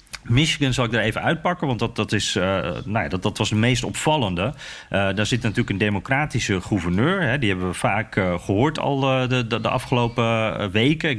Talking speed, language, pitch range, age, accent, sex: 180 wpm, Dutch, 110-145 Hz, 40-59, Dutch, male